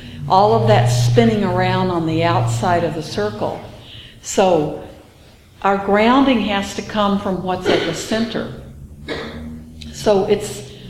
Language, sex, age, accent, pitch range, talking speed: English, female, 60-79, American, 165-200 Hz, 130 wpm